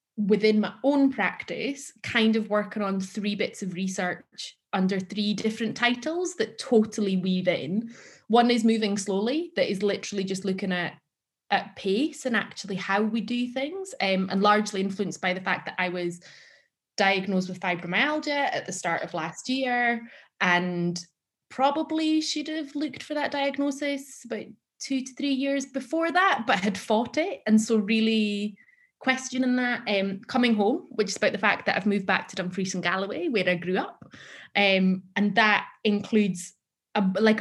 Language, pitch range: English, 185-245 Hz